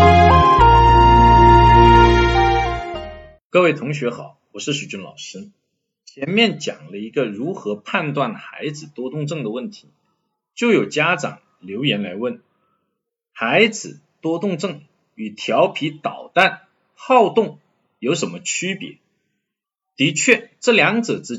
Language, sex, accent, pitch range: Chinese, male, native, 145-225 Hz